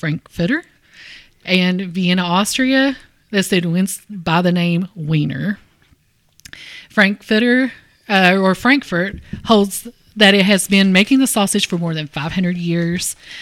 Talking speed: 125 wpm